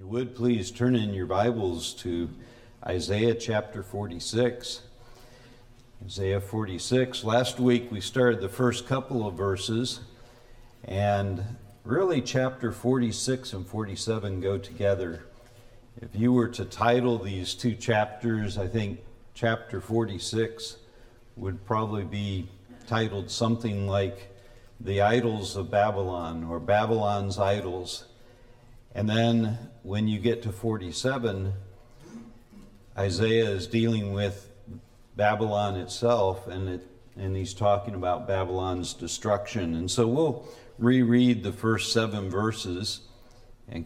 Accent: American